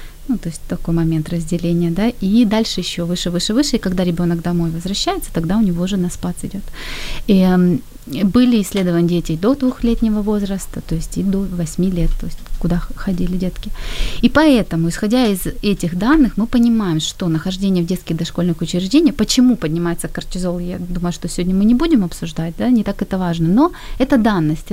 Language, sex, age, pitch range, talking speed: Ukrainian, female, 20-39, 175-225 Hz, 185 wpm